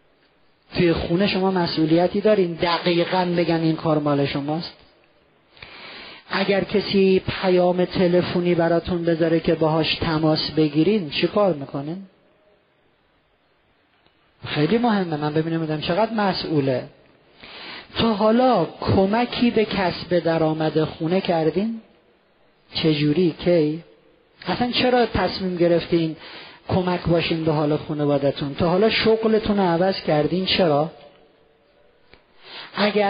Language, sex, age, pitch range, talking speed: Persian, male, 40-59, 155-190 Hz, 105 wpm